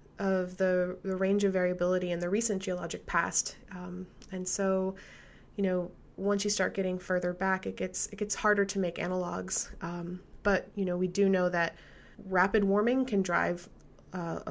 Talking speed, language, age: 180 wpm, English, 20-39